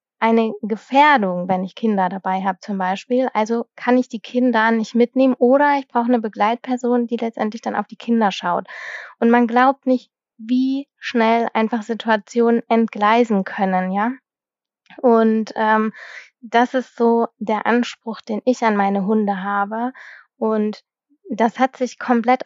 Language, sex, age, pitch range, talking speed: German, female, 20-39, 210-245 Hz, 150 wpm